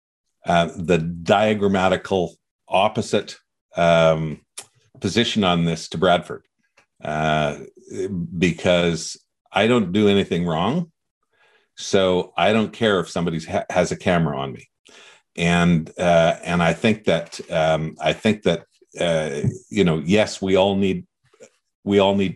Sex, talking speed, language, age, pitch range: male, 130 wpm, English, 50-69, 80-95 Hz